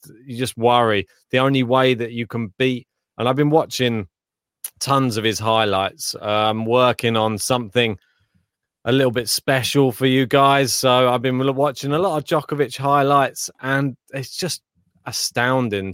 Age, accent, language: 30-49, British, English